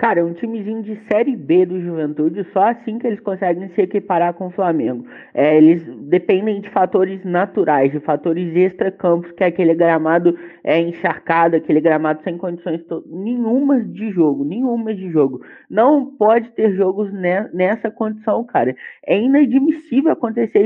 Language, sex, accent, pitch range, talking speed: Portuguese, male, Brazilian, 170-245 Hz, 150 wpm